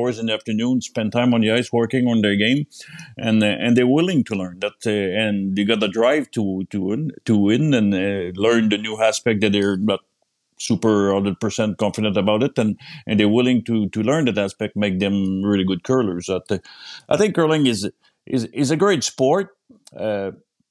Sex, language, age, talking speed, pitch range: male, English, 50-69, 210 wpm, 100-120 Hz